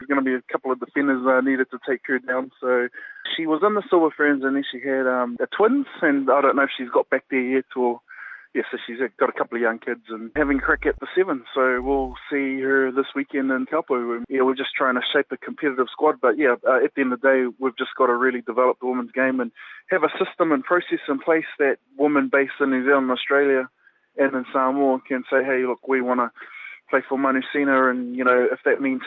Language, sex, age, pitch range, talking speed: English, male, 20-39, 130-145 Hz, 250 wpm